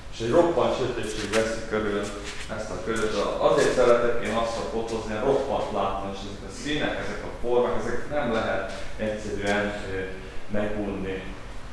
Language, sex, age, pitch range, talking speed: Hungarian, male, 30-49, 100-120 Hz, 155 wpm